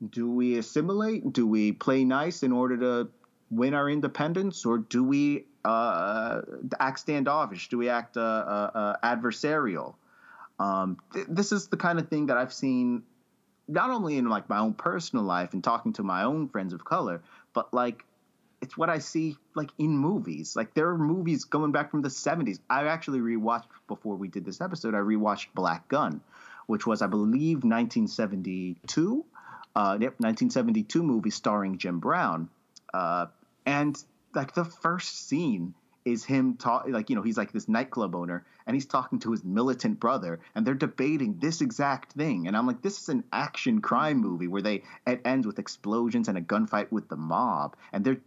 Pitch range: 105-165 Hz